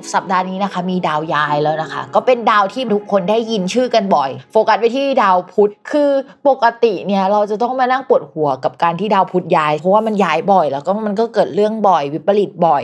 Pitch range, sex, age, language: 185-245 Hz, female, 20-39, Thai